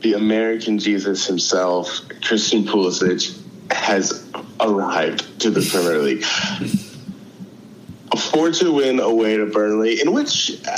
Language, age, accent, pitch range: English, 20-39, American, 100-130 Hz